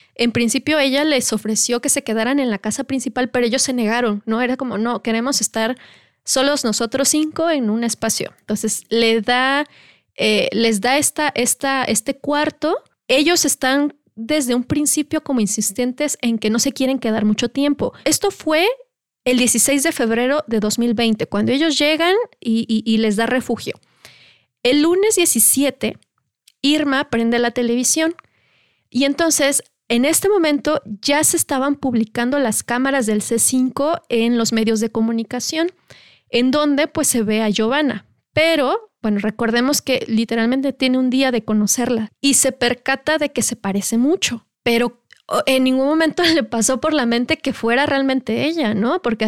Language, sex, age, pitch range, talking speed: English, female, 20-39, 225-285 Hz, 160 wpm